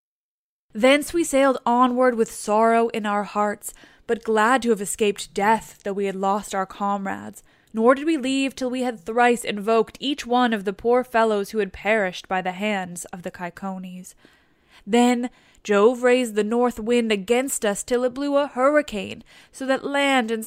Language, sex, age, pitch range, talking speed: English, female, 10-29, 210-255 Hz, 180 wpm